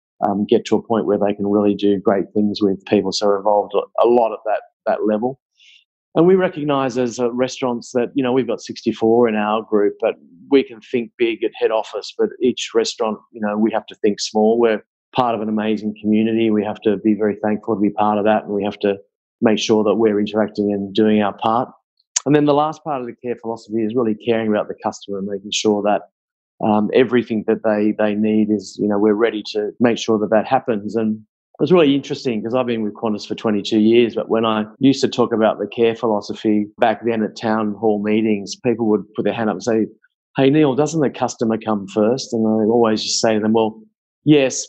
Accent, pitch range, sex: Australian, 105-120 Hz, male